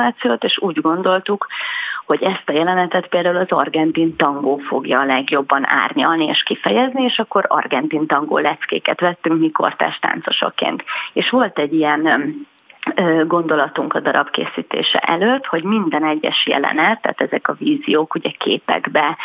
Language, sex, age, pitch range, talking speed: Hungarian, female, 30-49, 155-195 Hz, 135 wpm